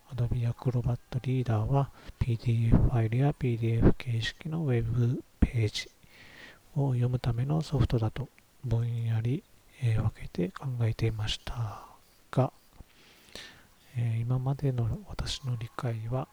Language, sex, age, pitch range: Japanese, male, 40-59, 115-135 Hz